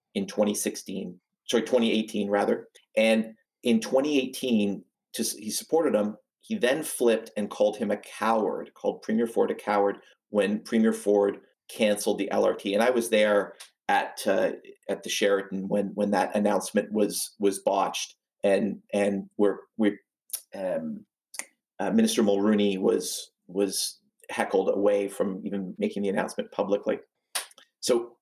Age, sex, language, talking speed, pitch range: 40-59, male, English, 140 wpm, 100-125 Hz